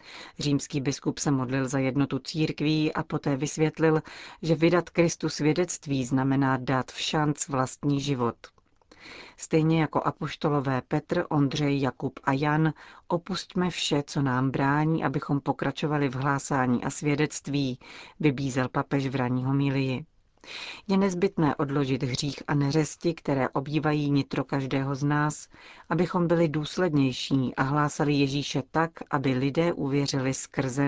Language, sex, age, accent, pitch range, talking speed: Czech, female, 40-59, native, 135-155 Hz, 130 wpm